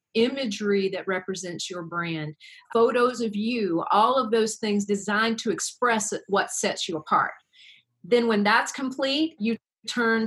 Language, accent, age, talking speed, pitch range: English, American, 40-59, 145 wpm, 200-230 Hz